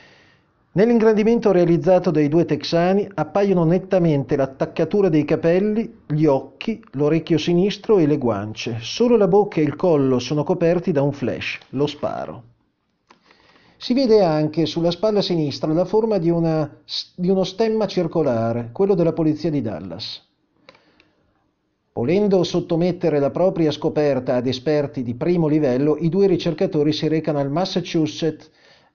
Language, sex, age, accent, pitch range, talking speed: Italian, male, 40-59, native, 145-185 Hz, 135 wpm